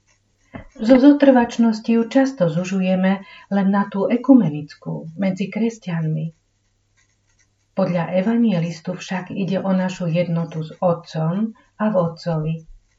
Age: 40-59